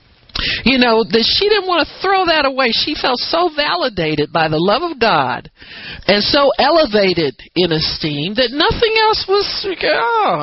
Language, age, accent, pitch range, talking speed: English, 50-69, American, 165-255 Hz, 160 wpm